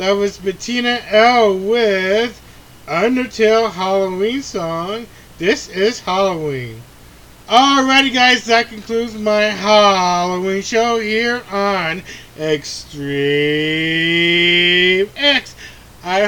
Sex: male